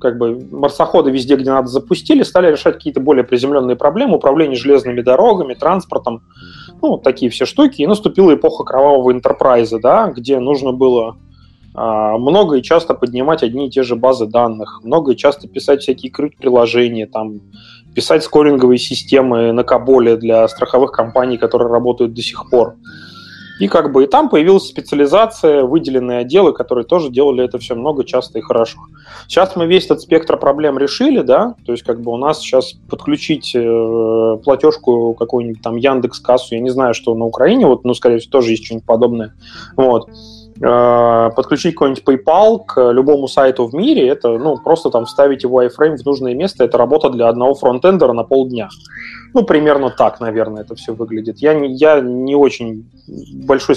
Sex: male